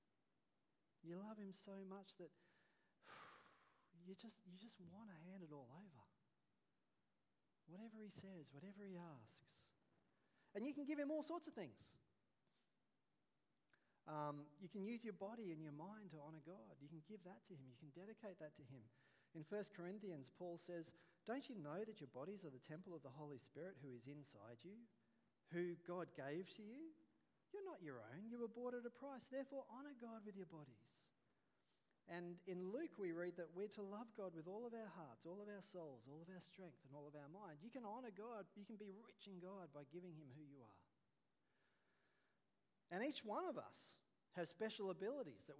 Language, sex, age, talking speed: English, male, 30-49, 200 wpm